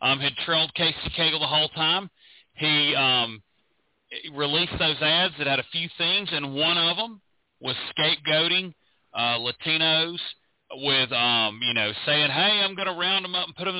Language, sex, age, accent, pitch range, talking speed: English, male, 40-59, American, 140-180 Hz, 185 wpm